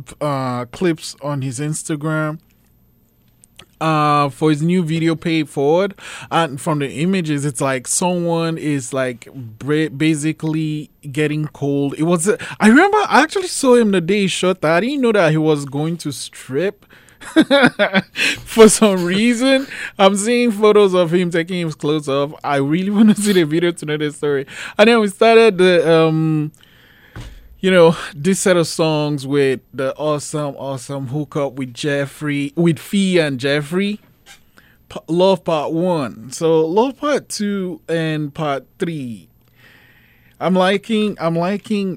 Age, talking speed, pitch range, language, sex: 20-39, 150 wpm, 140-185 Hz, English, male